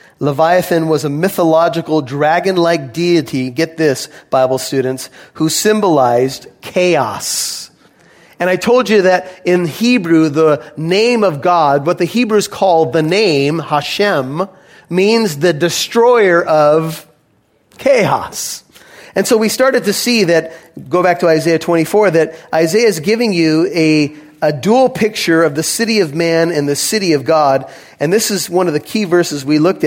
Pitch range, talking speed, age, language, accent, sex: 155-200 Hz, 155 wpm, 30-49, English, American, male